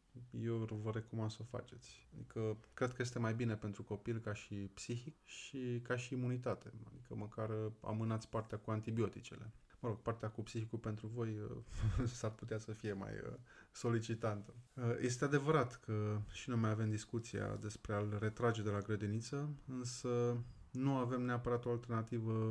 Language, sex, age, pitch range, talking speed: Romanian, male, 20-39, 110-120 Hz, 165 wpm